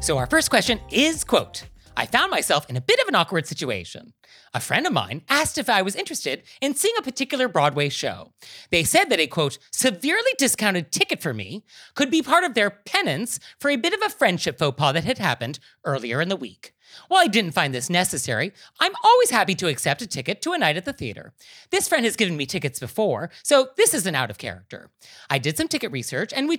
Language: English